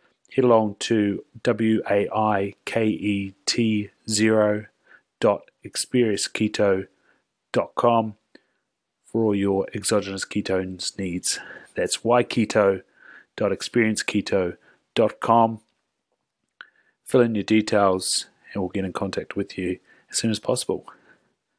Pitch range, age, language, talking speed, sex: 100-110 Hz, 30-49, English, 75 wpm, male